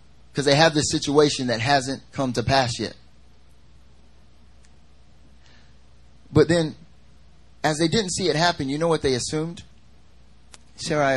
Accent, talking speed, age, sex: American, 135 wpm, 30-49, male